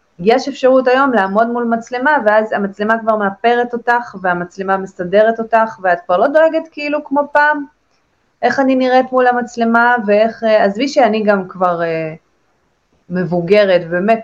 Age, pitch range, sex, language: 20-39, 185-230 Hz, female, Hebrew